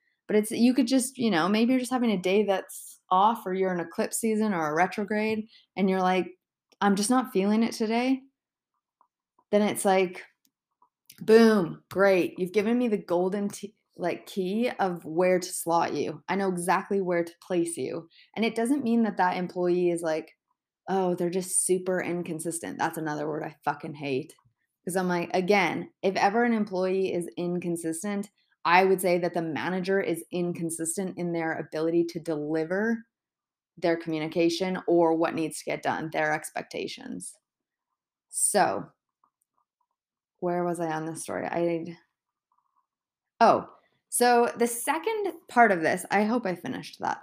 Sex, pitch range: female, 170-215 Hz